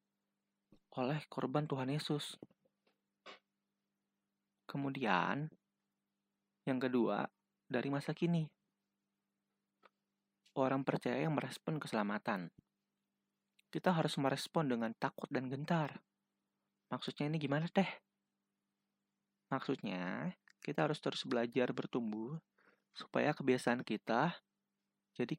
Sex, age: male, 20-39